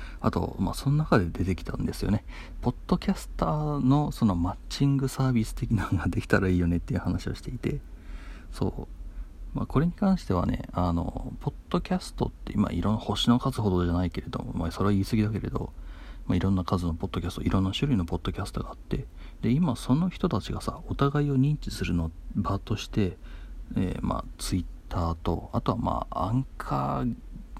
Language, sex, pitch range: Japanese, male, 85-120 Hz